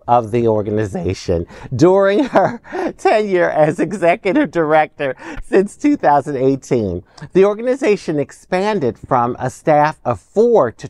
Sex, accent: male, American